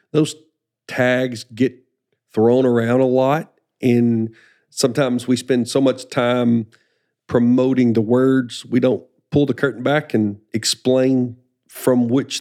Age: 50-69